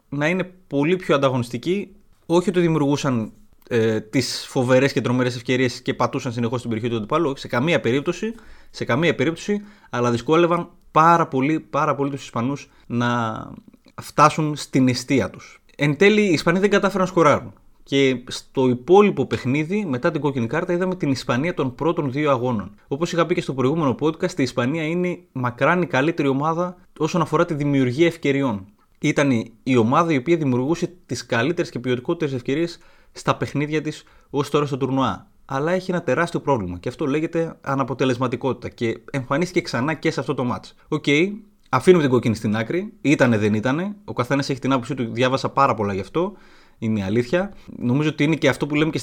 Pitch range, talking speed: 125-170 Hz, 180 wpm